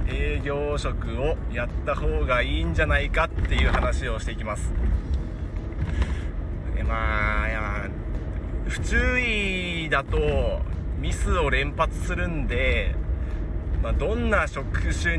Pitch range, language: 75-100 Hz, Japanese